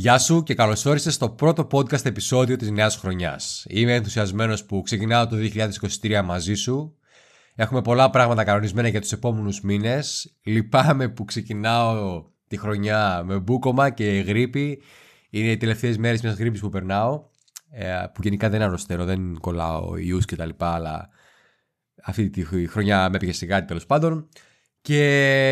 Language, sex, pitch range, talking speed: Greek, male, 100-130 Hz, 150 wpm